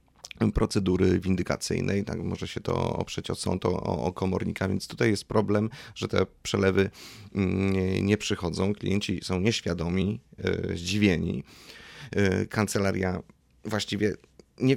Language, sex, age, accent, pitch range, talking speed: Polish, male, 30-49, native, 90-110 Hz, 120 wpm